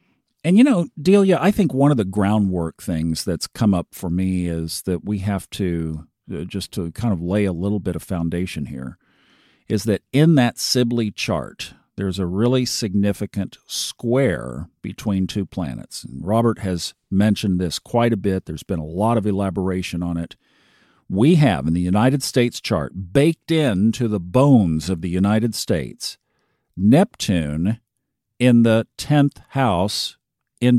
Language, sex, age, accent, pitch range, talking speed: English, male, 50-69, American, 90-120 Hz, 160 wpm